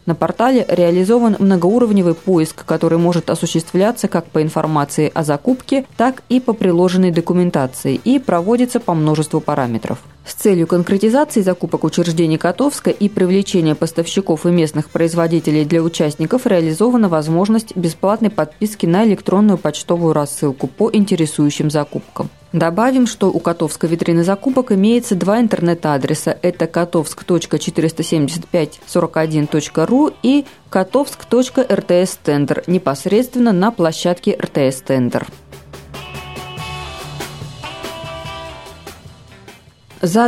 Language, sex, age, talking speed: Russian, female, 20-39, 100 wpm